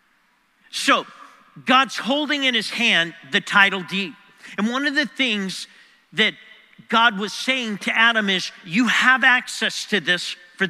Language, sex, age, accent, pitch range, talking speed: English, male, 50-69, American, 175-225 Hz, 150 wpm